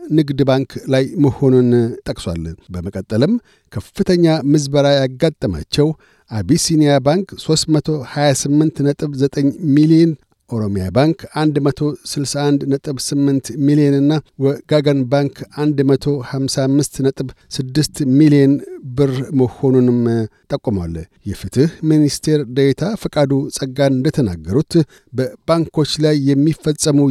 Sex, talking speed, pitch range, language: male, 80 wpm, 130-155 Hz, Amharic